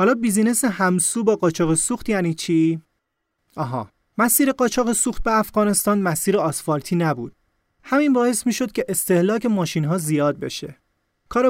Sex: male